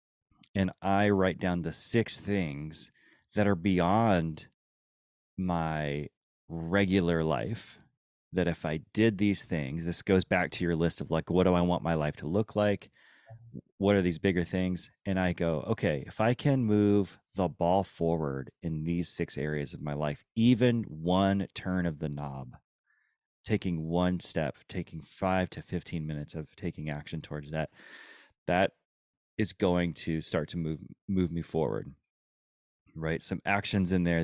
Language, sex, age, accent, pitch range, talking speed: English, male, 30-49, American, 80-95 Hz, 165 wpm